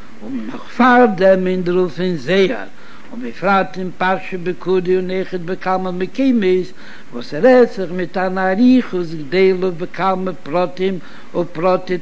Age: 60-79